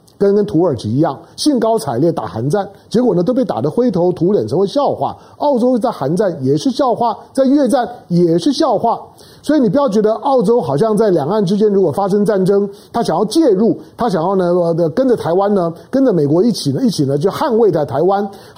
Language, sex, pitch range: Chinese, male, 145-220 Hz